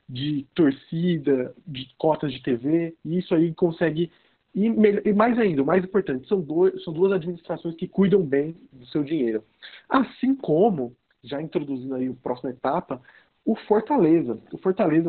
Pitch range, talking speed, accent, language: 135-180 Hz, 160 wpm, Brazilian, Portuguese